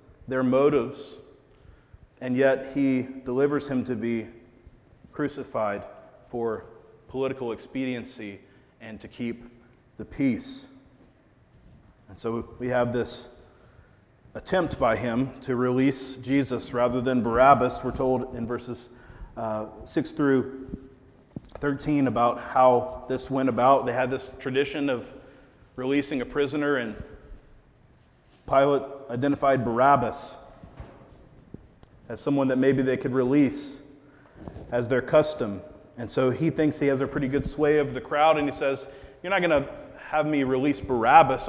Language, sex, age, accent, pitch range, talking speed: English, male, 30-49, American, 120-135 Hz, 130 wpm